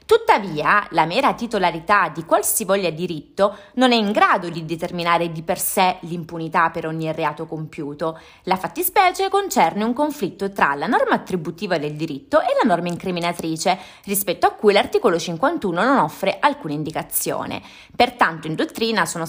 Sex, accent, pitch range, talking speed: female, native, 165-245 Hz, 150 wpm